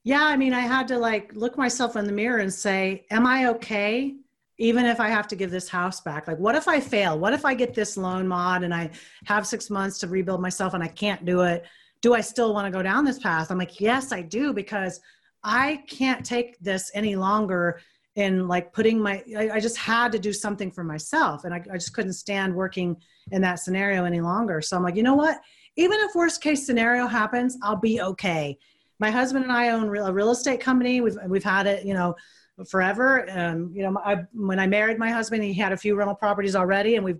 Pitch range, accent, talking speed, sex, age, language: 190-240 Hz, American, 235 wpm, female, 40-59, English